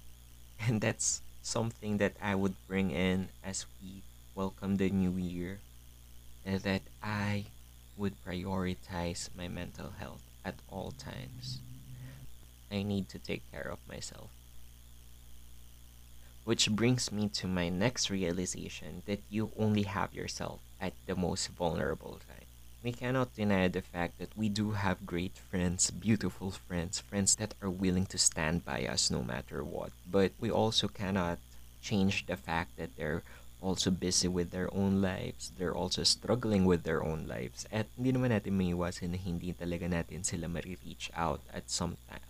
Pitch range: 65-100 Hz